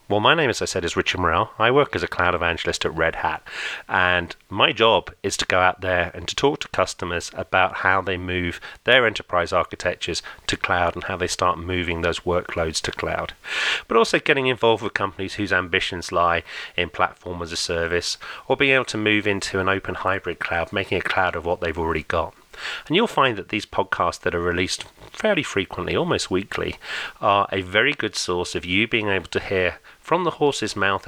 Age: 30-49